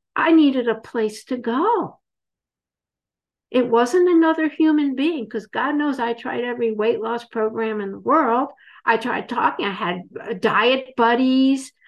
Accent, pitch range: American, 225-290 Hz